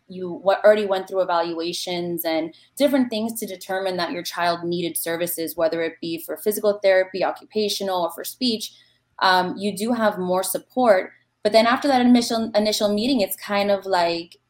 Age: 20-39